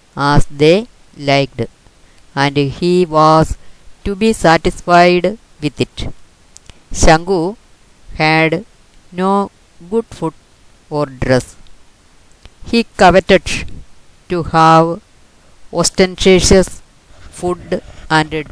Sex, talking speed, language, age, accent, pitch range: female, 85 wpm, Malayalam, 20-39, native, 140-180 Hz